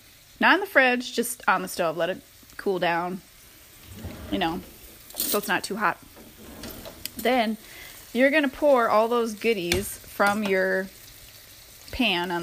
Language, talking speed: English, 150 wpm